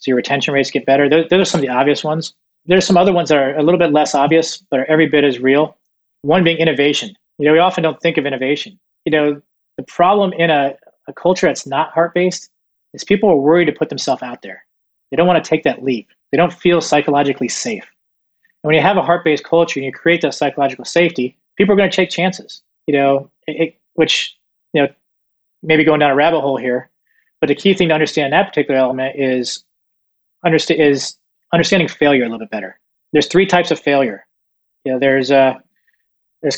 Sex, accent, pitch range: male, American, 140-170 Hz